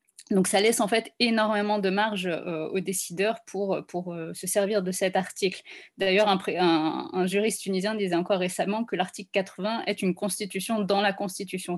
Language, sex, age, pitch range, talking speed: French, female, 20-39, 185-215 Hz, 195 wpm